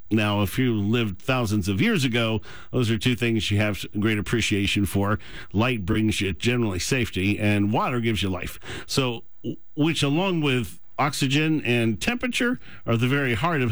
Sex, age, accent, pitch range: male, 50-69, American, 105-135 Hz